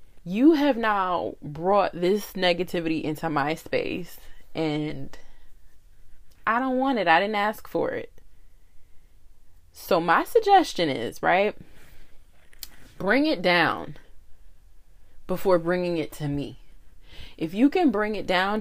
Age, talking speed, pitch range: 20-39, 125 wpm, 155-250 Hz